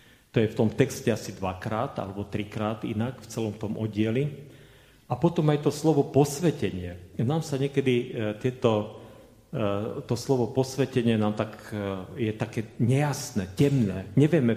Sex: male